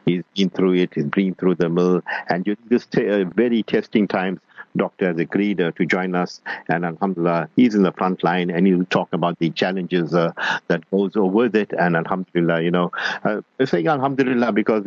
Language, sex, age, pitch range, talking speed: English, male, 50-69, 85-95 Hz, 205 wpm